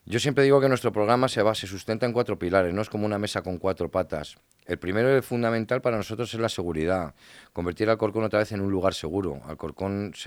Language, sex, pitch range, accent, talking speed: Spanish, male, 80-100 Hz, Spanish, 250 wpm